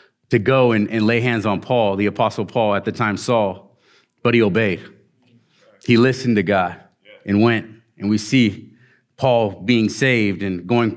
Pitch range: 95-110 Hz